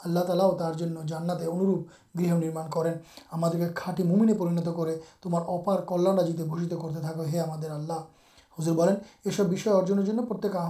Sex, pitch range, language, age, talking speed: male, 170-195 Hz, Urdu, 30-49, 100 wpm